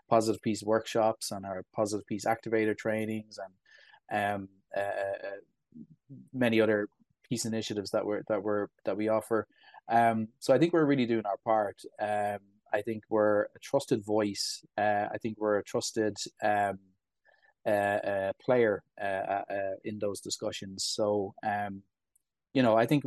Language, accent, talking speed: English, Irish, 155 wpm